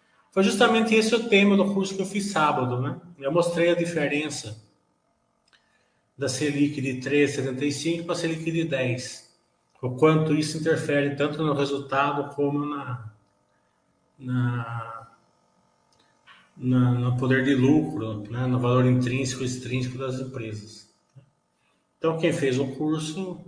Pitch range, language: 125-170 Hz, Portuguese